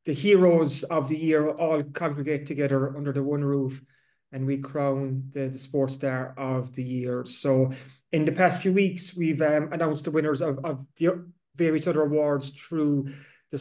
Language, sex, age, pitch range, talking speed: English, male, 30-49, 140-160 Hz, 180 wpm